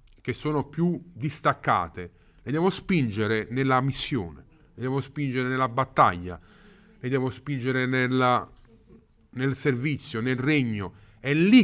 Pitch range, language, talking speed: 115-185 Hz, Italian, 125 wpm